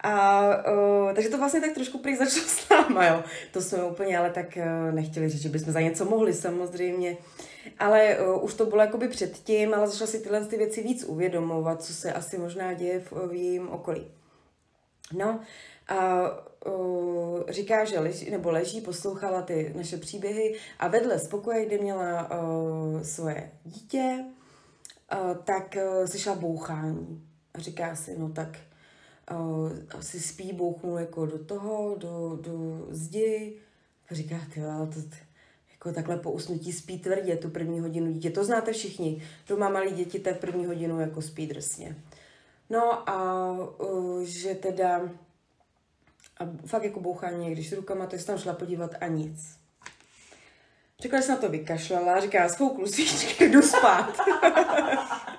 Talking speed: 160 wpm